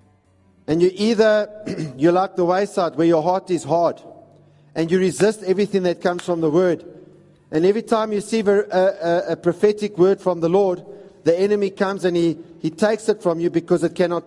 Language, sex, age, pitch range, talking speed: English, male, 50-69, 170-200 Hz, 200 wpm